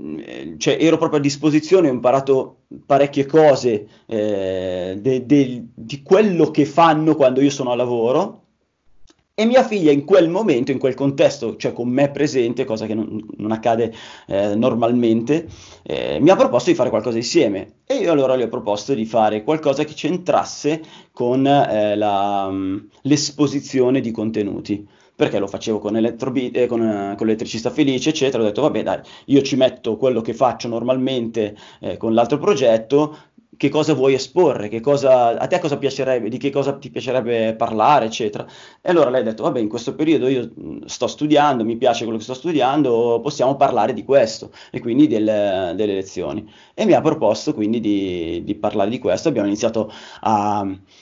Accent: native